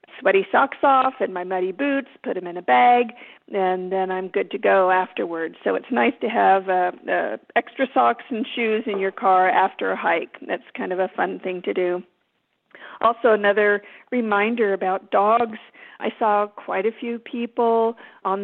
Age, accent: 40-59, American